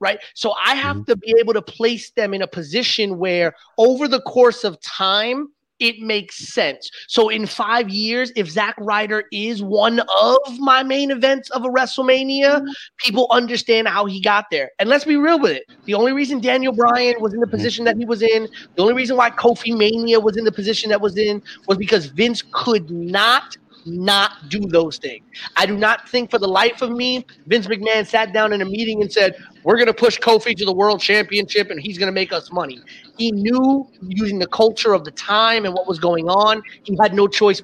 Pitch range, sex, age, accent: 190-235 Hz, male, 30-49, American